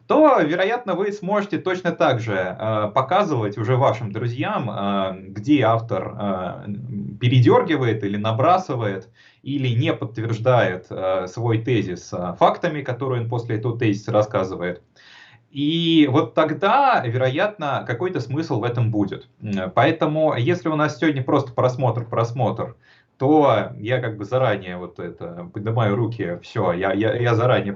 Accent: native